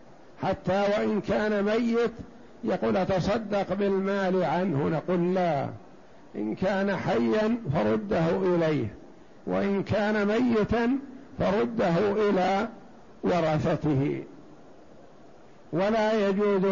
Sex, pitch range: male, 175-205 Hz